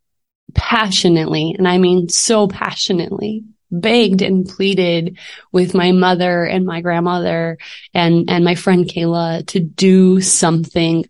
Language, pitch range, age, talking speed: English, 170-190 Hz, 20-39, 125 wpm